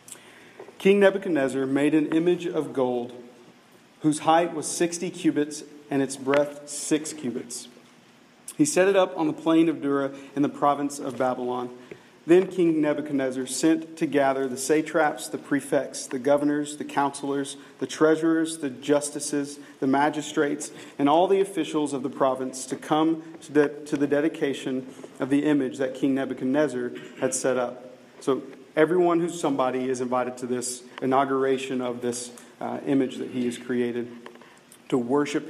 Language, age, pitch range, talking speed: English, 40-59, 130-150 Hz, 155 wpm